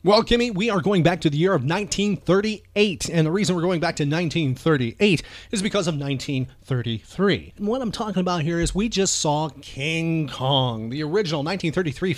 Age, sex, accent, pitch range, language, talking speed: 30-49, male, American, 120-180 Hz, English, 180 wpm